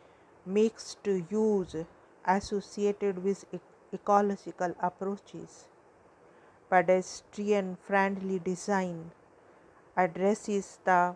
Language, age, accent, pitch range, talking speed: English, 50-69, Indian, 180-200 Hz, 60 wpm